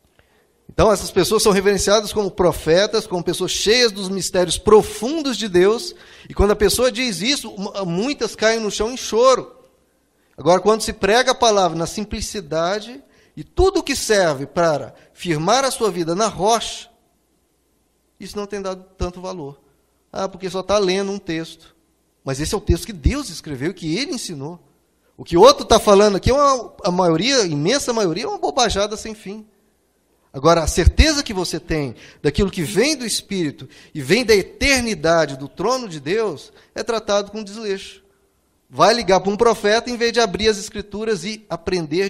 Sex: male